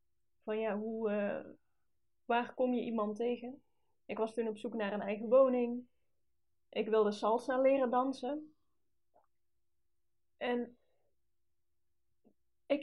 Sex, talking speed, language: female, 110 wpm, Dutch